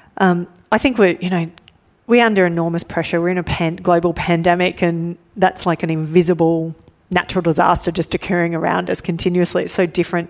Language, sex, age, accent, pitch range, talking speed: English, female, 30-49, Australian, 165-180 Hz, 175 wpm